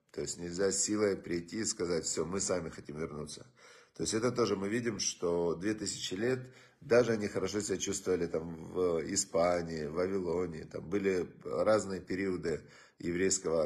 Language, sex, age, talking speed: Russian, male, 40-59, 160 wpm